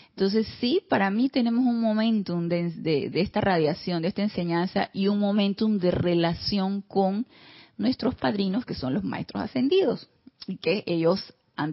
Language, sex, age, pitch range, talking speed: Spanish, female, 30-49, 180-240 Hz, 165 wpm